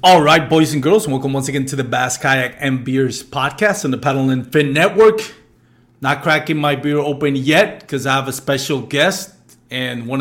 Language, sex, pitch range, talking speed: English, male, 125-150 Hz, 205 wpm